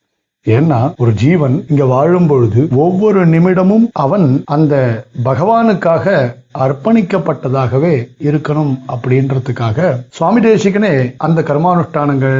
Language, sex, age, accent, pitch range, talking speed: Tamil, male, 60-79, native, 140-185 Hz, 85 wpm